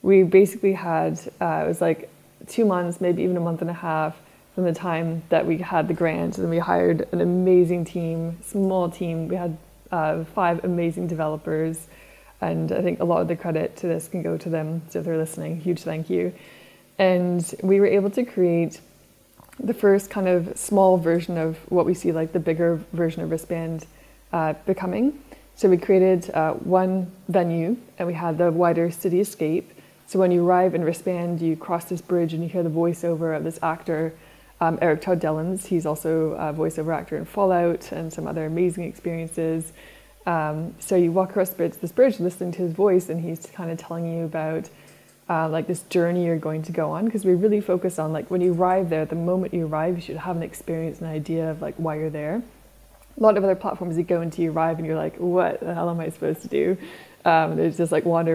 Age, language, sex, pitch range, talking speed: 20-39, English, female, 165-185 Hz, 220 wpm